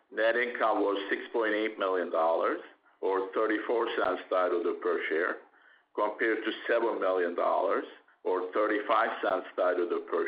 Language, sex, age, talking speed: English, male, 50-69, 105 wpm